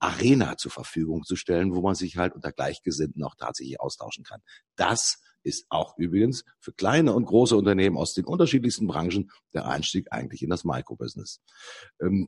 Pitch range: 95-135 Hz